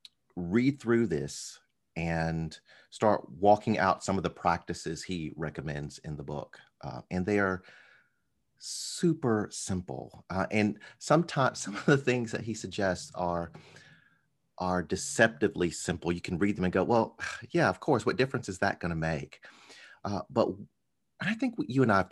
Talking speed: 165 wpm